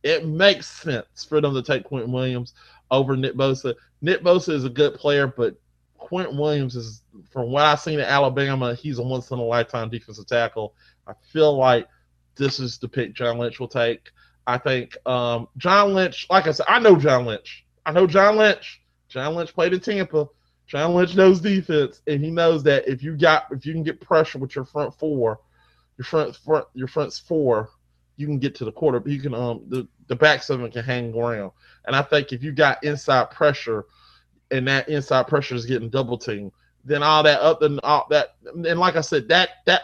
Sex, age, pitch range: male, 30-49, 125-155 Hz